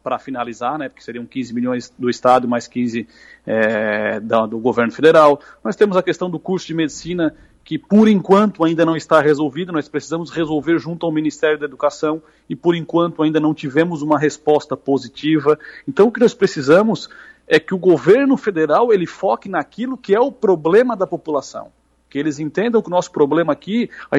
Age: 40-59